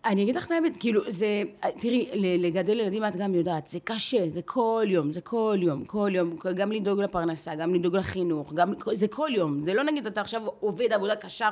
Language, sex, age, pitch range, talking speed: Hebrew, female, 30-49, 175-220 Hz, 215 wpm